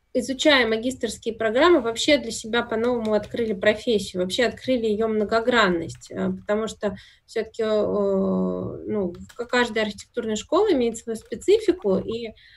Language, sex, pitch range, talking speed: Russian, female, 195-245 Hz, 115 wpm